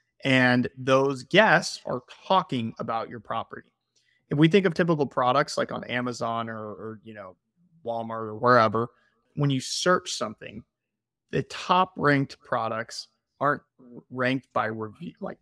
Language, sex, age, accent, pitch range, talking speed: English, male, 30-49, American, 120-150 Hz, 145 wpm